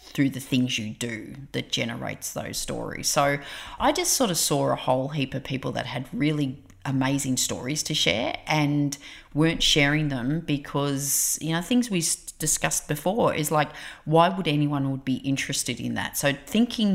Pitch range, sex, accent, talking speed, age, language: 130-155 Hz, female, Australian, 175 wpm, 30-49, English